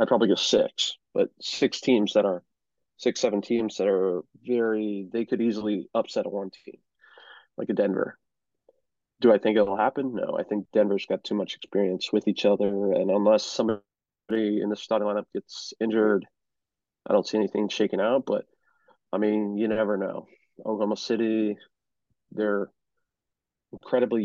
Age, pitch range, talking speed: 20-39, 100-110 Hz, 165 wpm